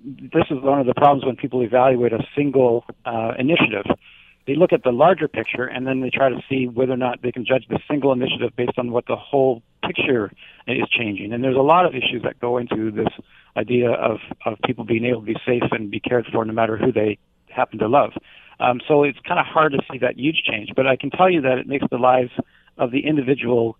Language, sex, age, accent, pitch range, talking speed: English, male, 50-69, American, 120-140 Hz, 240 wpm